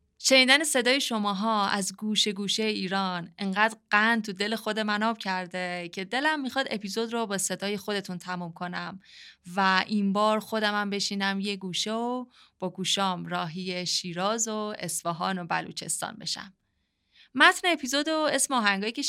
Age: 20-39